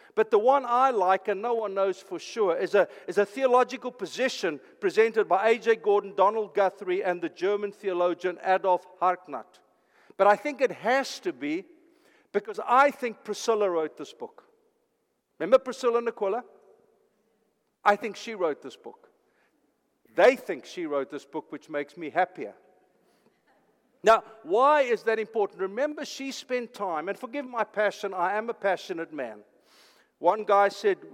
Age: 50-69